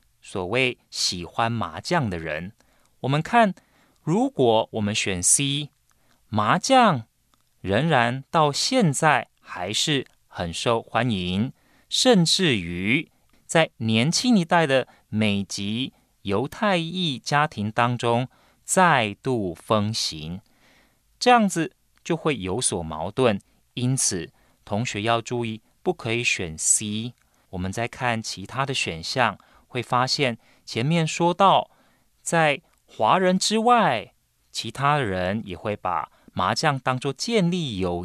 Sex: male